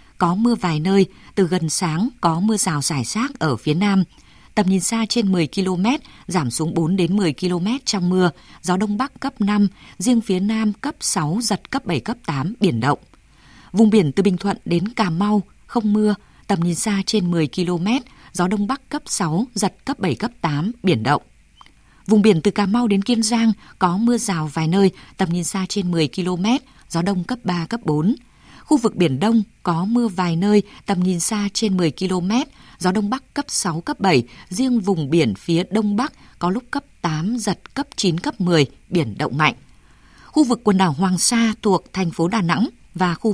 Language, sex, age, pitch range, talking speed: Vietnamese, female, 20-39, 175-220 Hz, 210 wpm